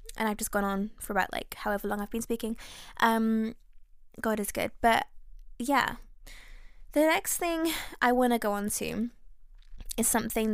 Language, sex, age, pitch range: English, female, 10-29, 210-245 Hz